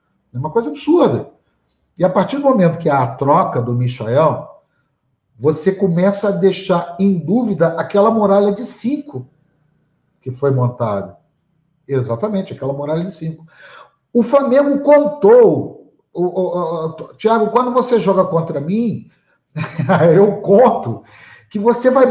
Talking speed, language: 130 wpm, Portuguese